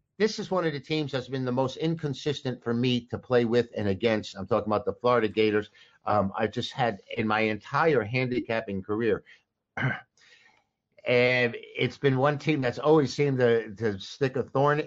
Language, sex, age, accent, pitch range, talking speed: English, male, 60-79, American, 115-150 Hz, 185 wpm